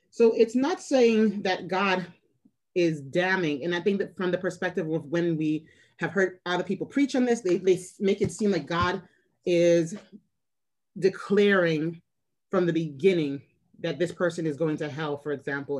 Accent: American